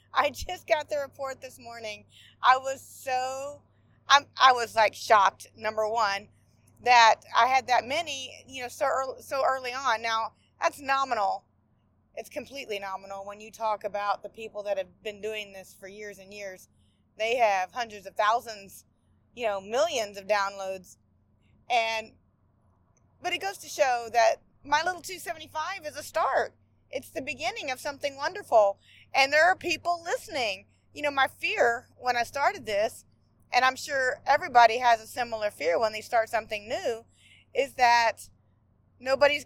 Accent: American